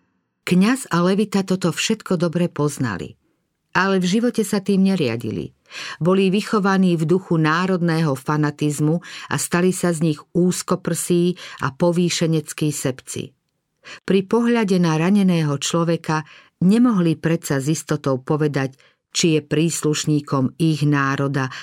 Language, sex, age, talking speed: Slovak, female, 50-69, 120 wpm